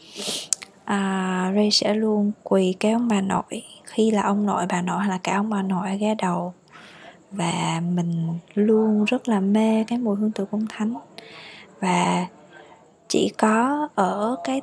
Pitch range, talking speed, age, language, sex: 185-225 Hz, 160 wpm, 20-39, Vietnamese, female